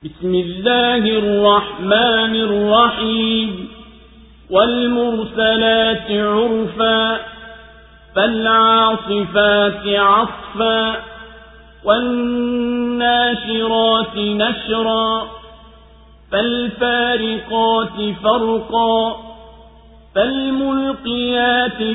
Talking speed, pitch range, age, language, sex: 35 wpm, 215-235 Hz, 50-69, Swahili, male